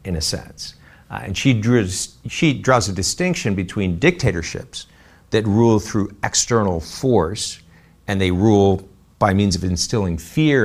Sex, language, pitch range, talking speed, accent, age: male, English, 85-115 Hz, 145 wpm, American, 50-69